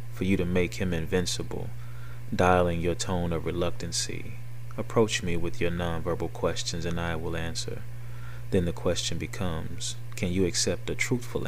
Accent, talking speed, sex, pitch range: American, 155 wpm, male, 90-120 Hz